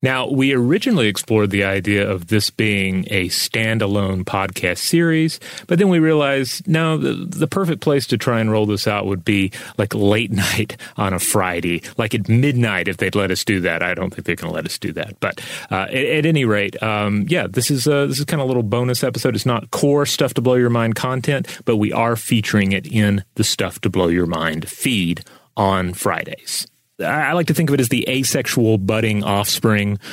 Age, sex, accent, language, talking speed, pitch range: 30-49, male, American, English, 215 wpm, 100-130 Hz